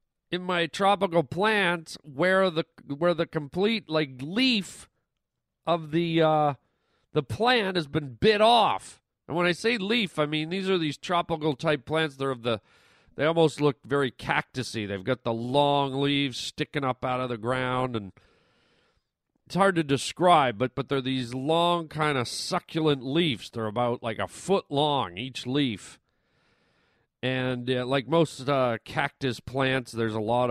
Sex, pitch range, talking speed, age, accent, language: male, 125-175 Hz, 165 wpm, 40-59, American, English